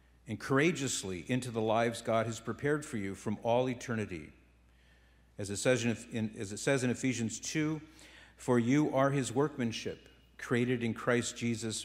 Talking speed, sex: 140 wpm, male